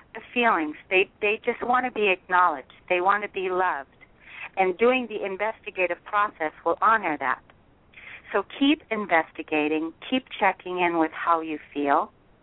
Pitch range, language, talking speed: 160-215 Hz, English, 155 wpm